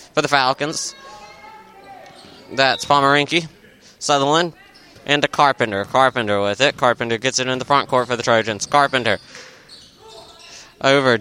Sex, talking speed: male, 130 wpm